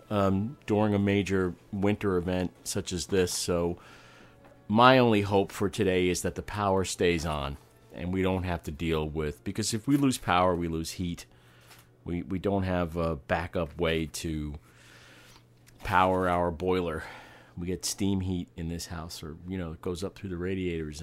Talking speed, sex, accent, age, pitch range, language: 180 wpm, male, American, 40-59, 85-105 Hz, English